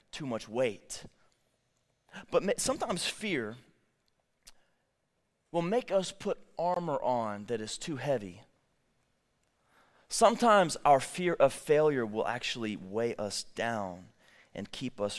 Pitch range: 115-145 Hz